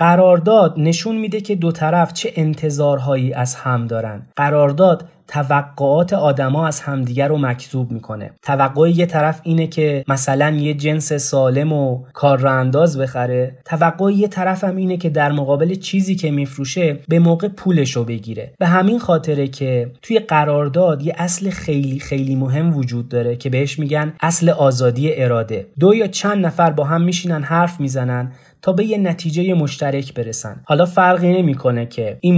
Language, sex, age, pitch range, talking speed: Persian, male, 30-49, 135-170 Hz, 155 wpm